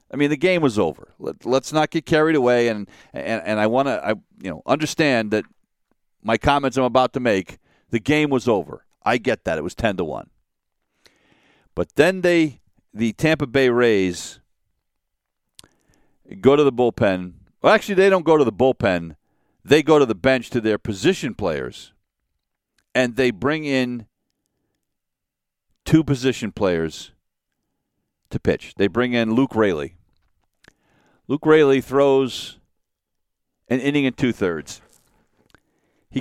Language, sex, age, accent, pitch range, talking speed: English, male, 50-69, American, 100-135 Hz, 150 wpm